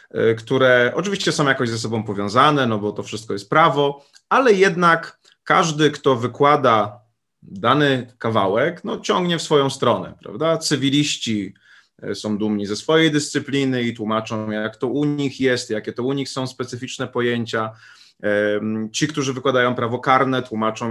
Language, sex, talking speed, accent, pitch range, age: Polish, male, 150 wpm, native, 110-140 Hz, 30-49